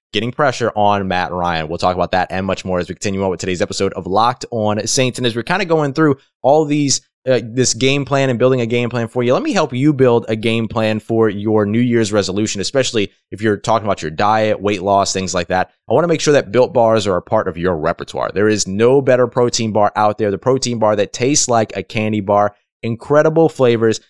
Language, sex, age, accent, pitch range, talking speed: English, male, 20-39, American, 100-125 Hz, 255 wpm